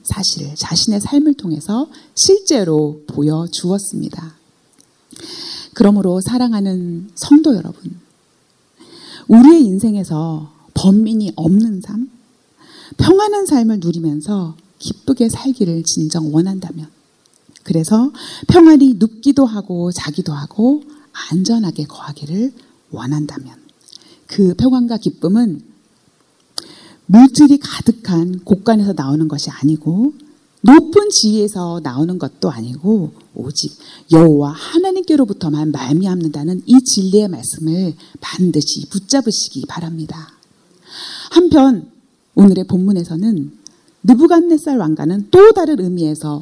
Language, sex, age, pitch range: Korean, female, 40-59, 165-260 Hz